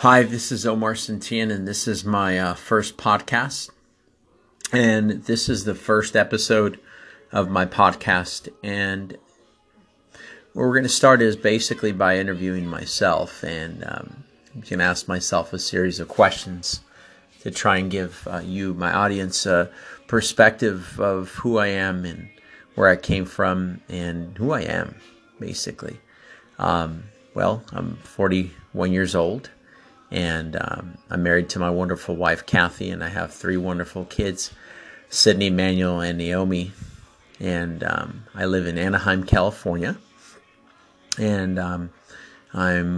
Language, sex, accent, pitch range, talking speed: German, male, American, 90-105 Hz, 140 wpm